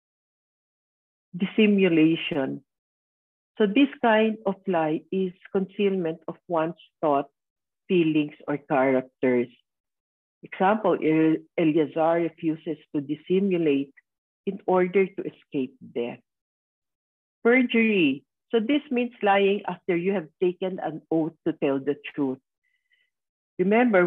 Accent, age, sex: Filipino, 50-69, female